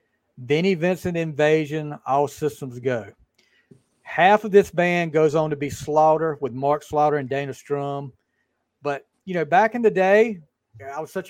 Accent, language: American, English